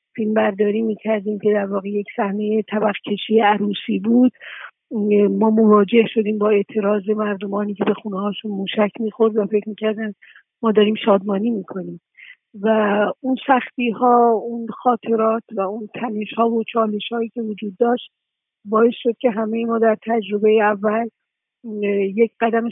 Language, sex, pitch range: Persian, female, 210-230 Hz